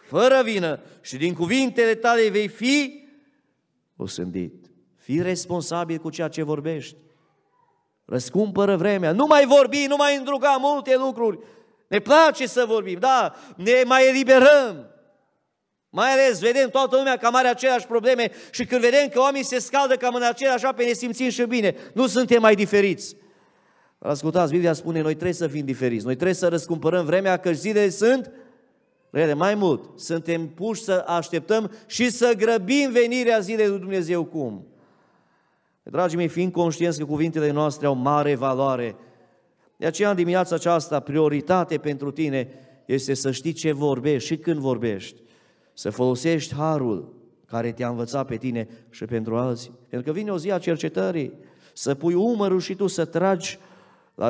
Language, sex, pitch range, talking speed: Romanian, male, 150-245 Hz, 160 wpm